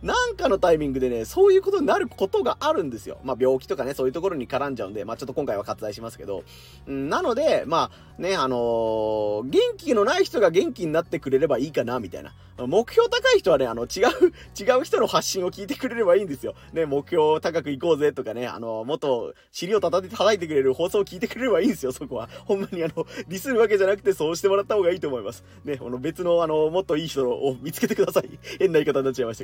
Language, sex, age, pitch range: Japanese, male, 30-49, 130-205 Hz